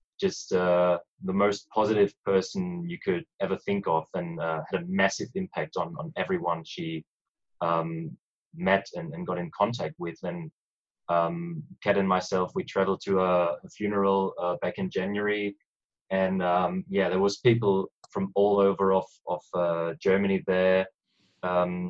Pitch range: 85-100 Hz